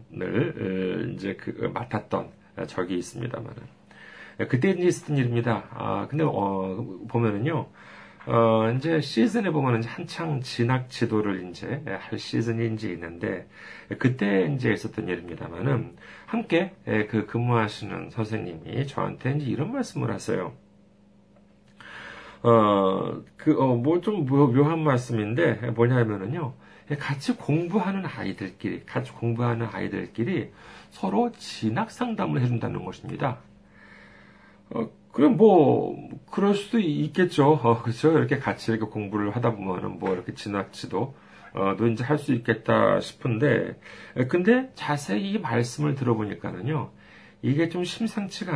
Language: Korean